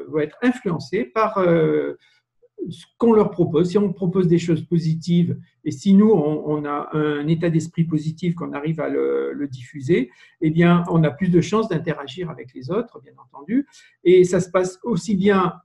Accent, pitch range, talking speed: French, 150-200 Hz, 190 wpm